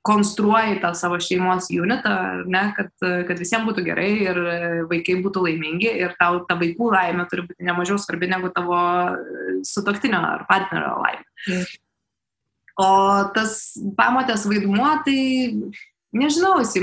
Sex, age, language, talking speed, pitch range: female, 20-39, English, 130 wpm, 180-220 Hz